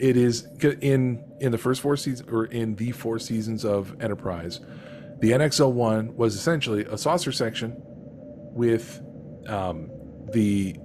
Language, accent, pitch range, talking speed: English, American, 105-125 Hz, 140 wpm